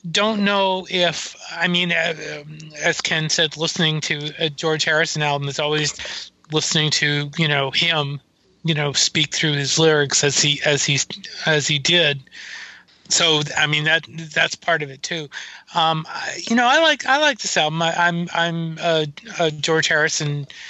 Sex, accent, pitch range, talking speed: male, American, 145-170 Hz, 175 wpm